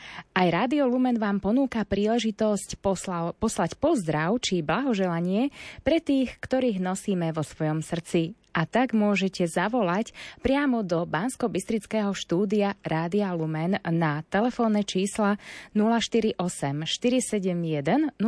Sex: female